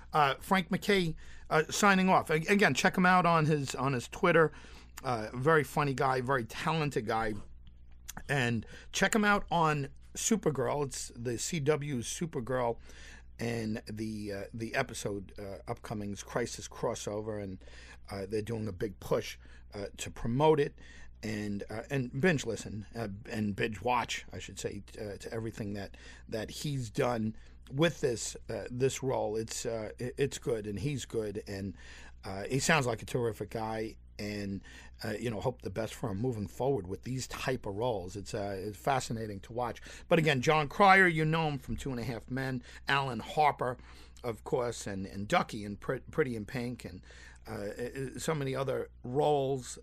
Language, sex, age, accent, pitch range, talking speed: English, male, 50-69, American, 100-140 Hz, 170 wpm